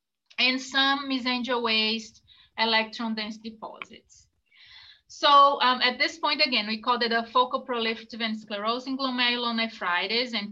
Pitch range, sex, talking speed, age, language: 215-250 Hz, female, 125 wpm, 20-39, English